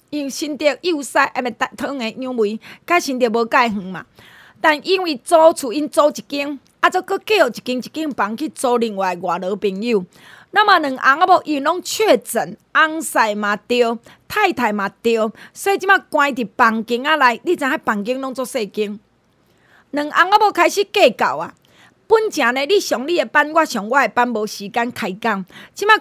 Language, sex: Chinese, female